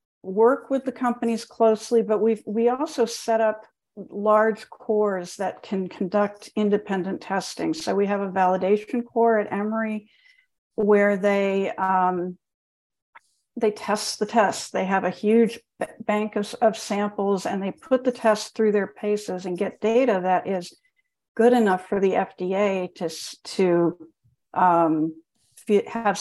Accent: American